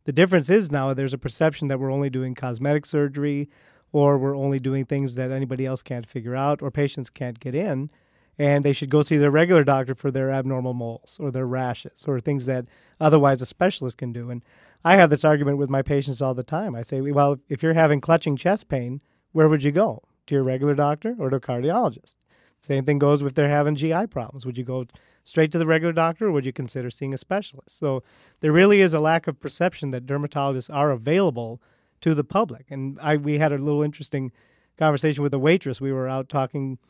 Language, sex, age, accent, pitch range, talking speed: English, male, 30-49, American, 135-160 Hz, 225 wpm